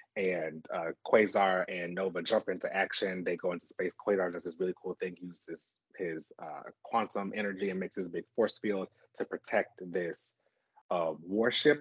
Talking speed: 185 wpm